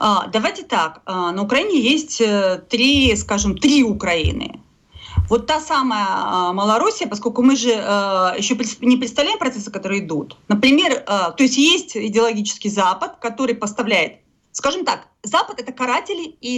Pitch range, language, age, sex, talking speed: 215-325 Hz, Russian, 30-49, female, 135 wpm